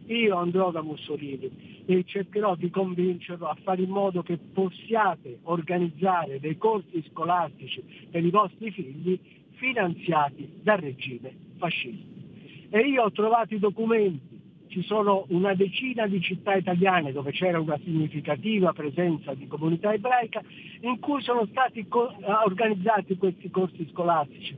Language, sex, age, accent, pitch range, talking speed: Italian, male, 50-69, native, 175-220 Hz, 135 wpm